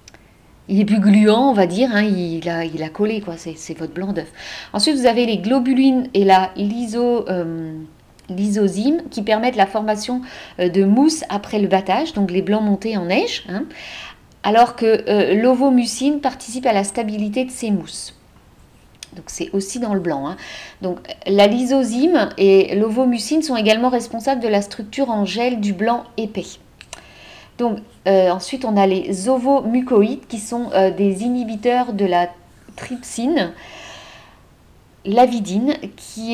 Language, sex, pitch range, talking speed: French, female, 190-240 Hz, 155 wpm